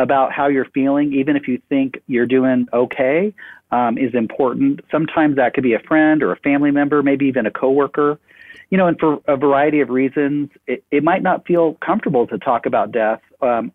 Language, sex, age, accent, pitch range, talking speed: English, male, 40-59, American, 125-145 Hz, 205 wpm